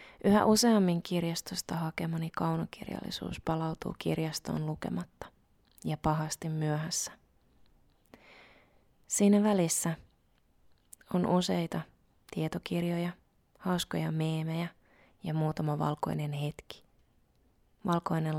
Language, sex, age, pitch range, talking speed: Finnish, female, 30-49, 155-180 Hz, 75 wpm